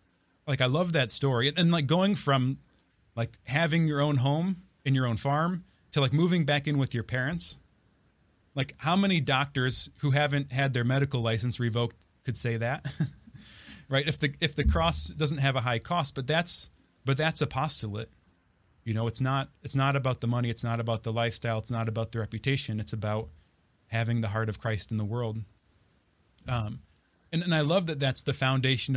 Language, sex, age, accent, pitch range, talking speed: English, male, 30-49, American, 115-150 Hz, 195 wpm